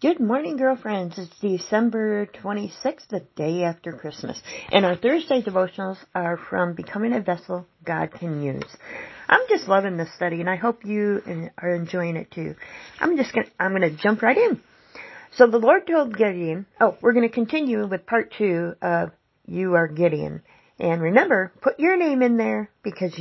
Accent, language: American, English